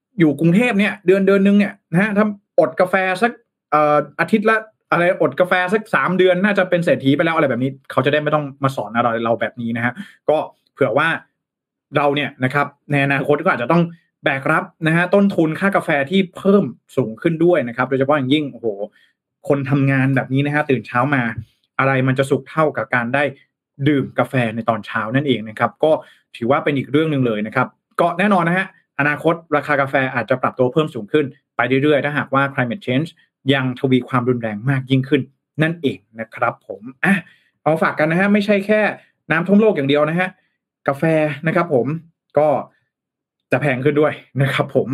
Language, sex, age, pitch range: Thai, male, 20-39, 135-180 Hz